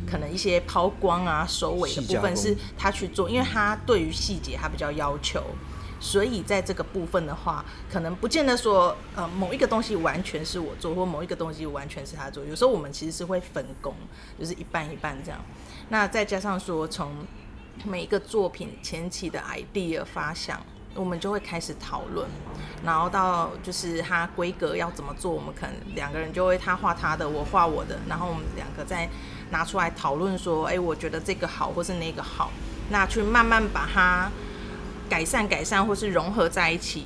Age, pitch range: 30-49, 165-205 Hz